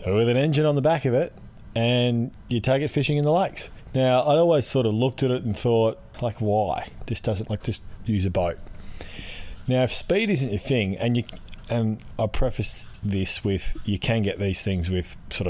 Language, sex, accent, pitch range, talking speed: English, male, Australian, 95-125 Hz, 215 wpm